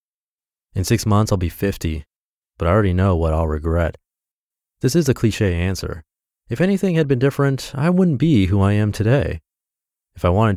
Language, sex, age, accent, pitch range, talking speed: English, male, 30-49, American, 90-125 Hz, 185 wpm